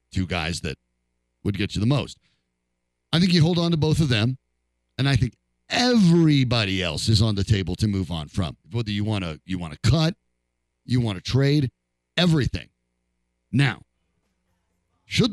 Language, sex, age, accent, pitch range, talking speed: English, male, 50-69, American, 90-150 Hz, 175 wpm